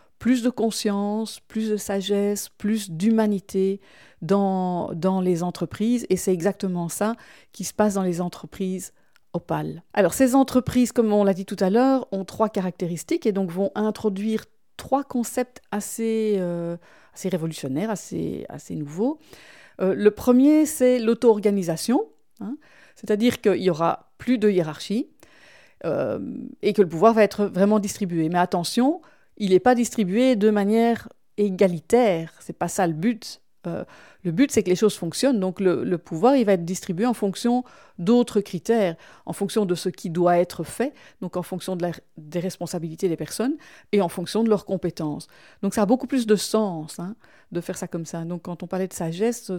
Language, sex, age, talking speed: French, female, 50-69, 180 wpm